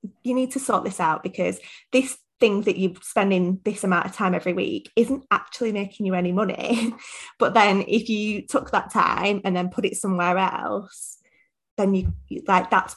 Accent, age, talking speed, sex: British, 20-39, 190 wpm, female